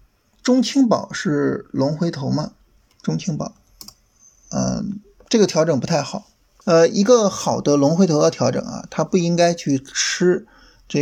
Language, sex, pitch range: Chinese, male, 140-205 Hz